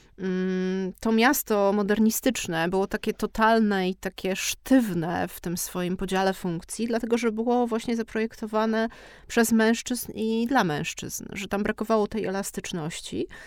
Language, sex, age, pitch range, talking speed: Polish, female, 30-49, 190-235 Hz, 130 wpm